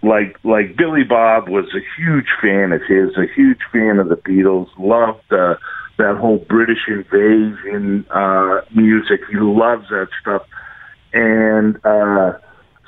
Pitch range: 100-130 Hz